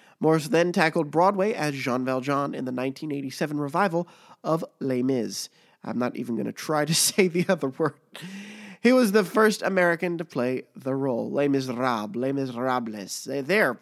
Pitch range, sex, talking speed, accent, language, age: 135-180 Hz, male, 170 wpm, American, English, 30-49